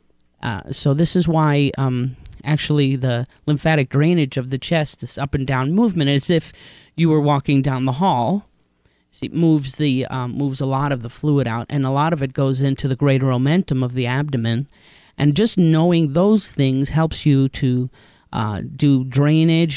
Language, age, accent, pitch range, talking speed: English, 40-59, American, 130-155 Hz, 190 wpm